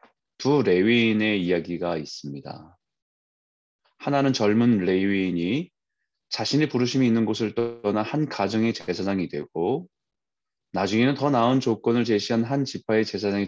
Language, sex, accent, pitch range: Korean, male, native, 95-130 Hz